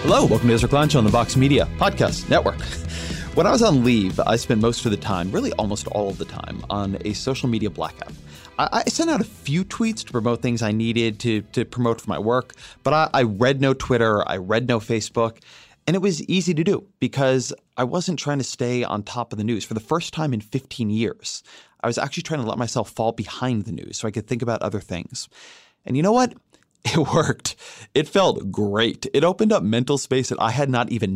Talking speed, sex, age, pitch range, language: 235 wpm, male, 30-49, 105-145 Hz, English